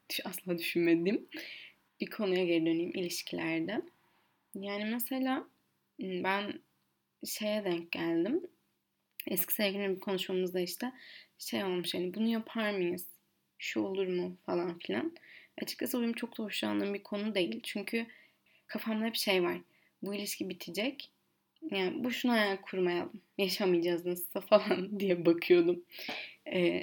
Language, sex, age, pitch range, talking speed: Turkish, female, 20-39, 175-220 Hz, 125 wpm